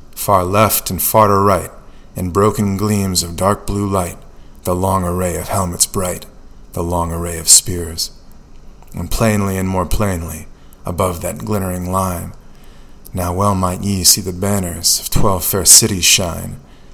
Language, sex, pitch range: English, male, 85-100 Hz